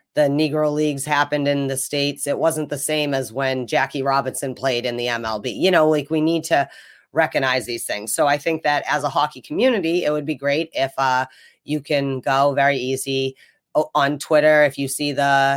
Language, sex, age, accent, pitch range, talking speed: English, female, 30-49, American, 135-155 Hz, 205 wpm